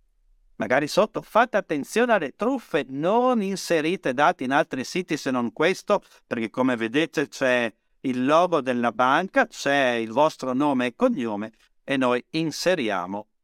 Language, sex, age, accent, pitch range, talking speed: Italian, male, 50-69, native, 120-175 Hz, 145 wpm